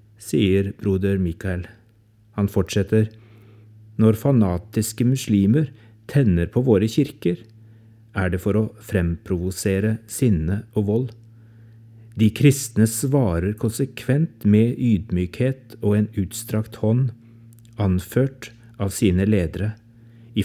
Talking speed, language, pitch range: 105 wpm, English, 100-120 Hz